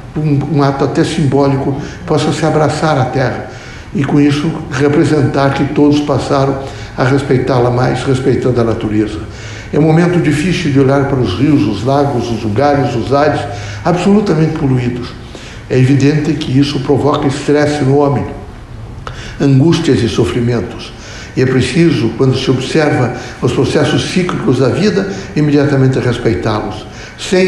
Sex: male